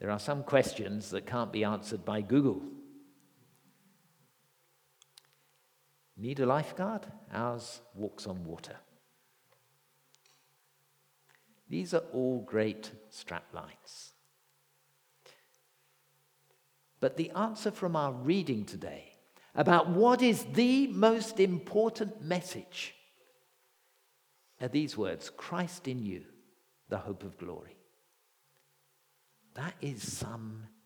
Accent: British